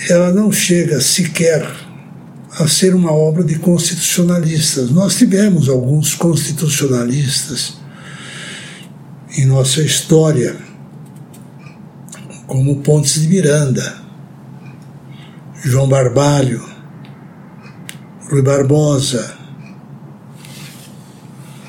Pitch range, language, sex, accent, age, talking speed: 140-170 Hz, Portuguese, male, Brazilian, 60-79, 70 wpm